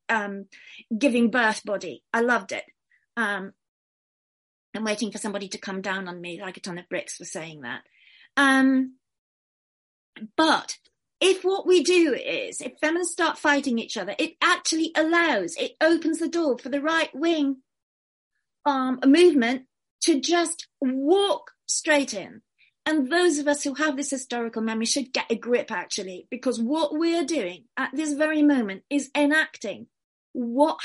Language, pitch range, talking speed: English, 210-300 Hz, 160 wpm